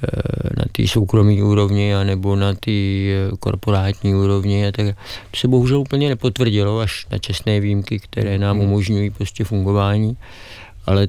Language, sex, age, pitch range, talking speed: Czech, male, 50-69, 100-110 Hz, 140 wpm